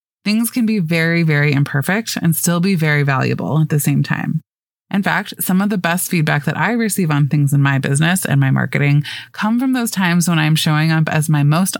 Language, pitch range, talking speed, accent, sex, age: English, 145-185 Hz, 225 wpm, American, female, 20-39